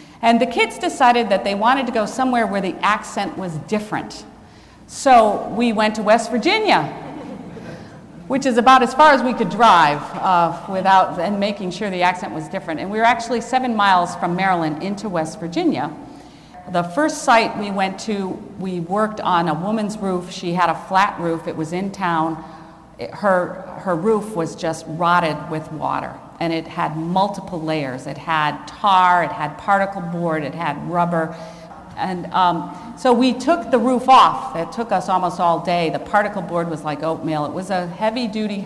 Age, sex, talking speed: 50-69, female, 185 wpm